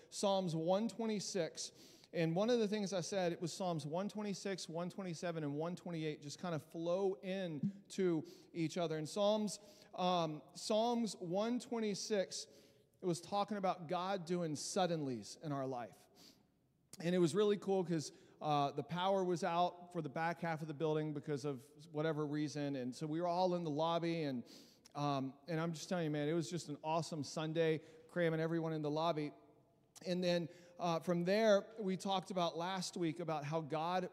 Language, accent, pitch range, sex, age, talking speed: English, American, 160-195 Hz, male, 40-59, 180 wpm